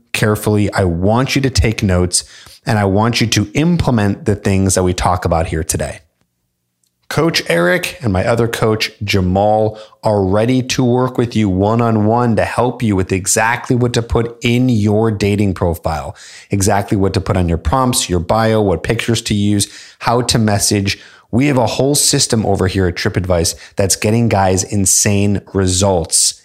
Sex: male